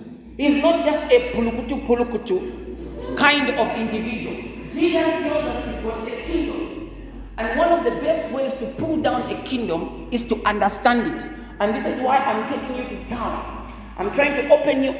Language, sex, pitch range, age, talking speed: English, male, 220-270 Hz, 40-59, 180 wpm